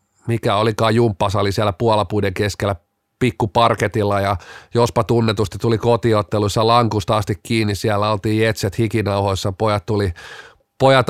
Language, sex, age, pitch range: Finnish, male, 30-49, 110-140 Hz